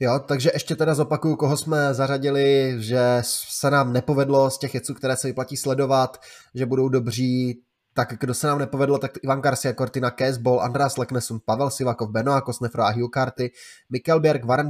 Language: Czech